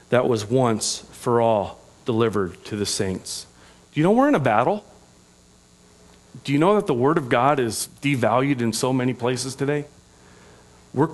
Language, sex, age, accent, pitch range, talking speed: English, male, 40-59, American, 110-155 Hz, 170 wpm